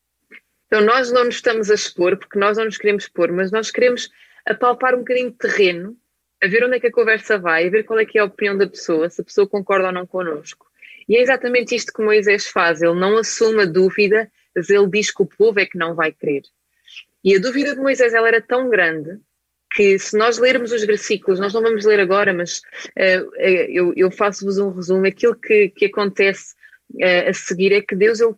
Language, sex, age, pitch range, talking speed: Portuguese, female, 20-39, 170-215 Hz, 230 wpm